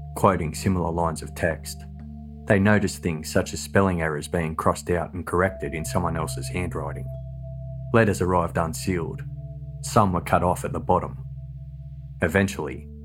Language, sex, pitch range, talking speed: English, male, 75-100 Hz, 145 wpm